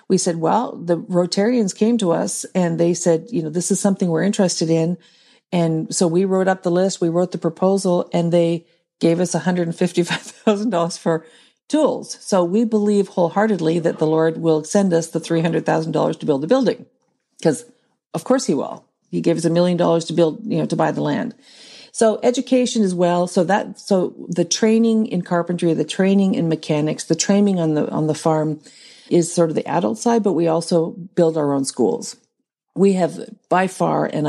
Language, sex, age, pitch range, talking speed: English, female, 50-69, 160-195 Hz, 195 wpm